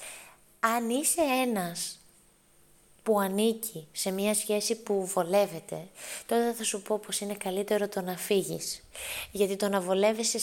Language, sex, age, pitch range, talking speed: Greek, female, 20-39, 190-230 Hz, 140 wpm